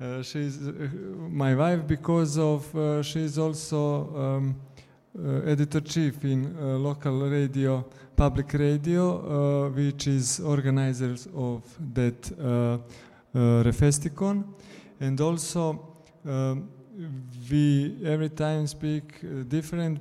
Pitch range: 140-160 Hz